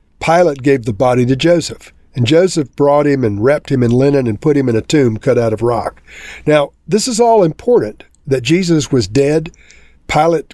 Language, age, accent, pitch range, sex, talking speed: English, 50-69, American, 125-165 Hz, male, 200 wpm